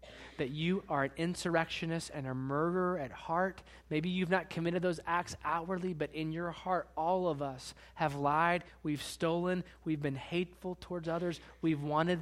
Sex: male